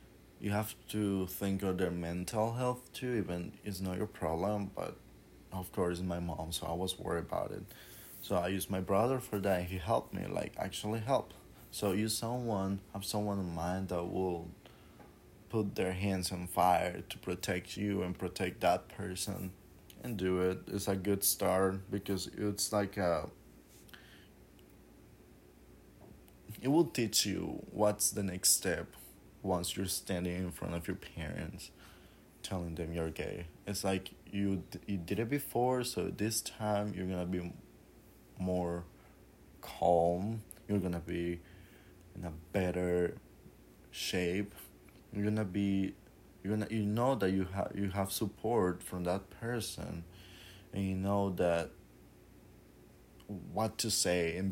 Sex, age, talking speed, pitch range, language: male, 20-39, 145 wpm, 85-100 Hz, English